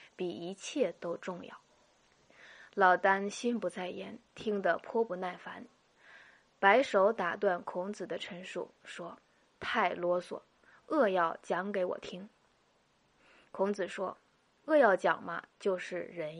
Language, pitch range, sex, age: Chinese, 180-230 Hz, female, 20-39